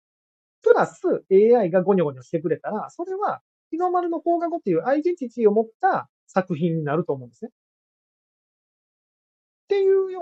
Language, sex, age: Japanese, male, 30-49